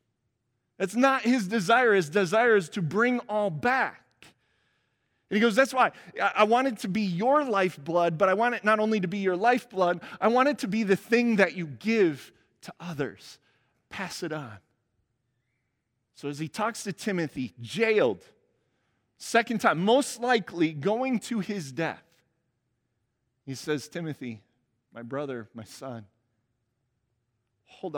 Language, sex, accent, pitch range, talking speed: English, male, American, 135-215 Hz, 150 wpm